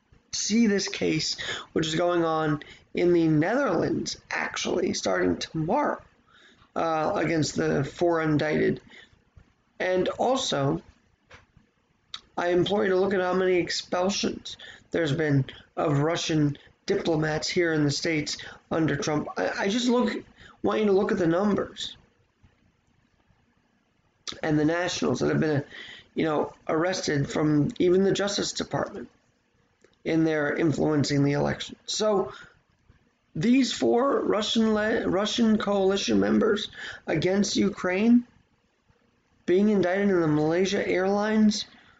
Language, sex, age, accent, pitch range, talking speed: English, male, 20-39, American, 155-205 Hz, 125 wpm